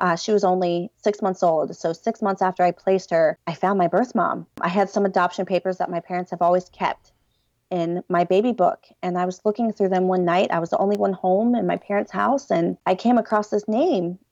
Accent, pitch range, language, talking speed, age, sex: American, 180-220 Hz, English, 245 wpm, 30-49, female